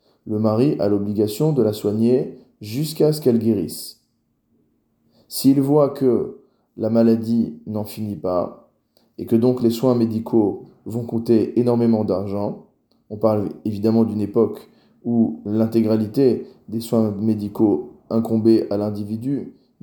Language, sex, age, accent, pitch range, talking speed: French, male, 20-39, French, 105-120 Hz, 130 wpm